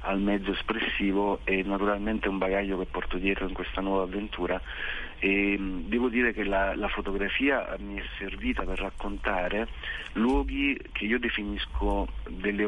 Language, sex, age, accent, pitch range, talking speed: Italian, male, 40-59, native, 95-105 Hz, 145 wpm